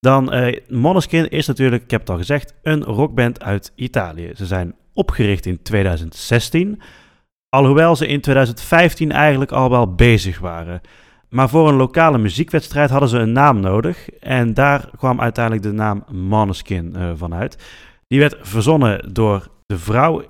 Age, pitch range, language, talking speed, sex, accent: 30-49, 100-130 Hz, Dutch, 160 wpm, male, Dutch